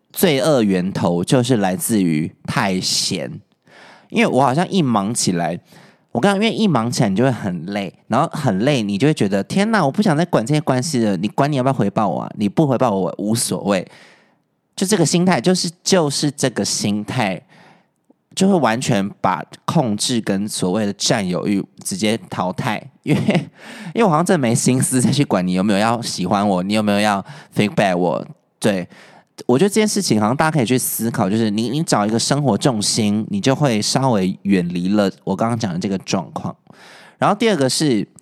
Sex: male